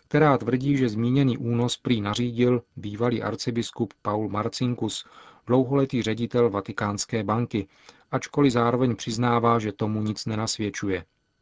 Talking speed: 115 wpm